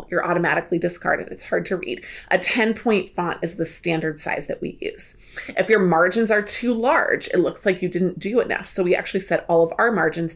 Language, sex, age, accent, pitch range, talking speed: English, female, 30-49, American, 170-215 Hz, 220 wpm